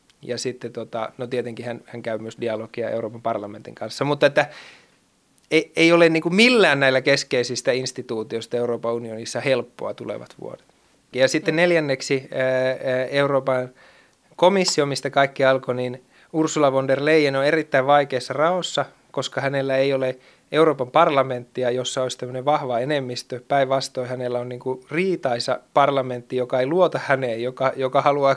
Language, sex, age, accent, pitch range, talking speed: Finnish, male, 30-49, native, 120-140 Hz, 135 wpm